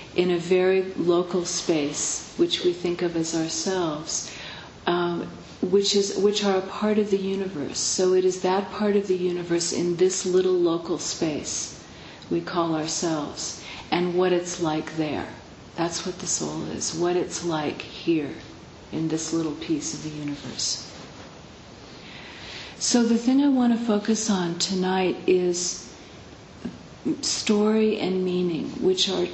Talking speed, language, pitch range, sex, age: 145 wpm, English, 170-195 Hz, female, 40-59